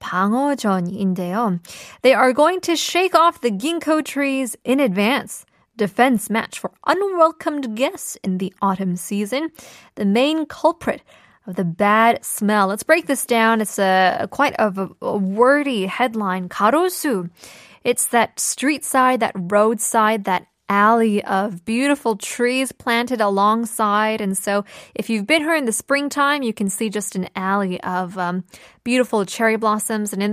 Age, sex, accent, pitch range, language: 20-39, female, American, 200-265 Hz, Korean